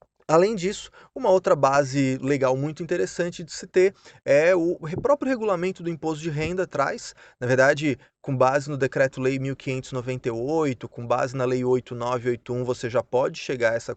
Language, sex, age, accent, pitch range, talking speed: Portuguese, male, 20-39, Brazilian, 130-170 Hz, 165 wpm